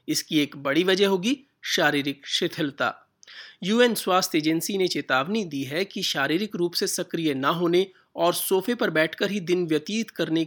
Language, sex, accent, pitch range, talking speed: Hindi, male, native, 150-195 Hz, 165 wpm